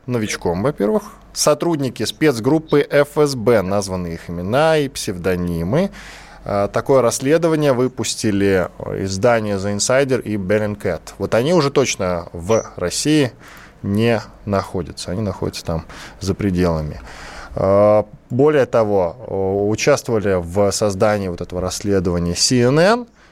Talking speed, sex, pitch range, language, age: 105 wpm, male, 100-140 Hz, Russian, 20-39